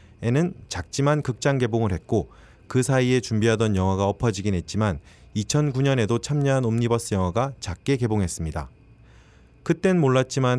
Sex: male